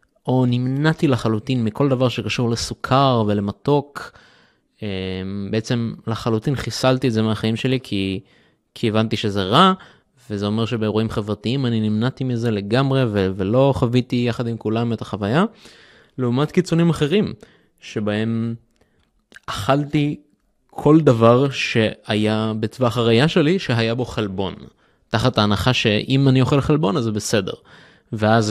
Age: 20-39